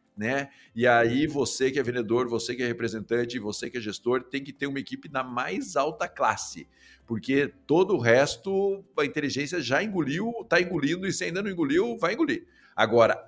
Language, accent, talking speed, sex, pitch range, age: Portuguese, Brazilian, 190 wpm, male, 120-160 Hz, 50-69